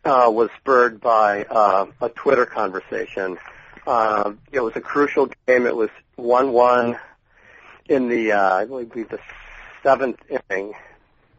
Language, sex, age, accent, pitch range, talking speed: English, male, 40-59, American, 110-125 Hz, 130 wpm